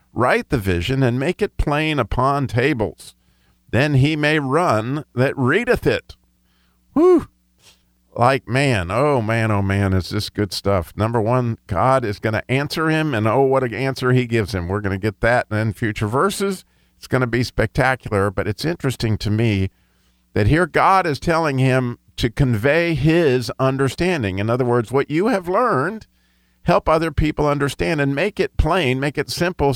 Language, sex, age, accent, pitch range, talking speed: English, male, 50-69, American, 100-140 Hz, 180 wpm